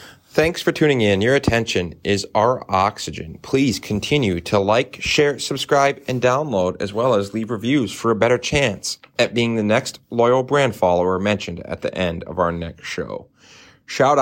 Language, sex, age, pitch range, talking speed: English, male, 30-49, 90-120 Hz, 175 wpm